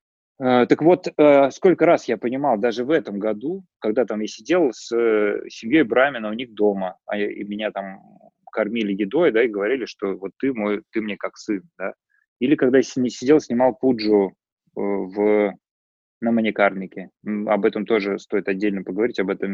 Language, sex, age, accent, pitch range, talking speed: Russian, male, 20-39, native, 105-135 Hz, 165 wpm